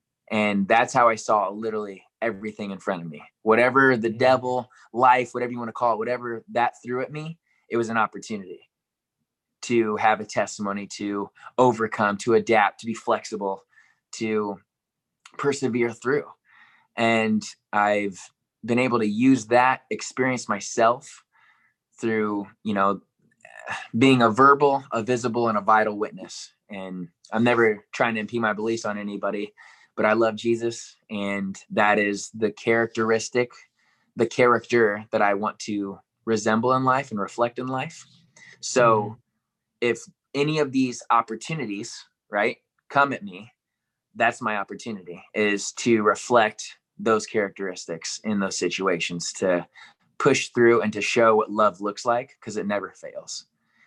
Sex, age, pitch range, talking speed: male, 20-39, 105-125 Hz, 145 wpm